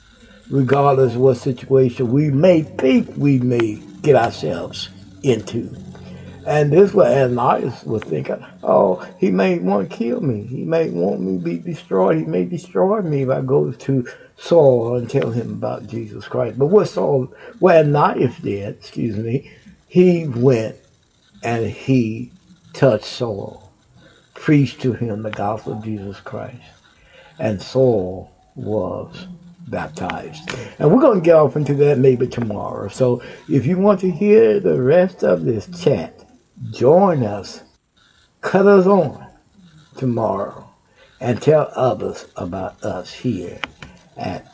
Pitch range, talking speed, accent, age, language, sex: 105-150 Hz, 145 wpm, American, 60-79, English, male